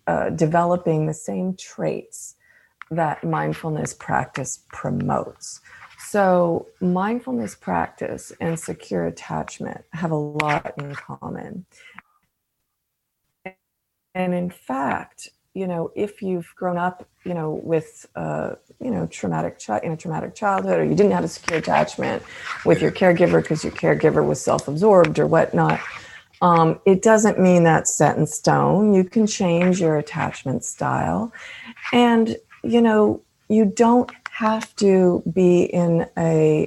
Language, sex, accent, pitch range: English, female, American, 155-200 Hz